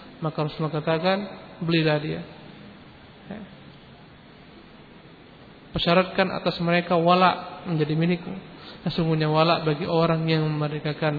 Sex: male